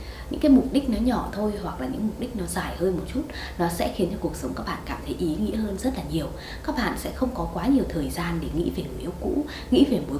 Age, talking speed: 20-39, 300 wpm